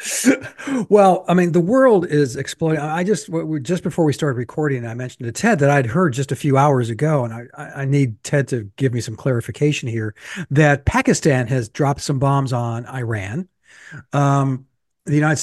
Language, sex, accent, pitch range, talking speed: English, male, American, 130-160 Hz, 185 wpm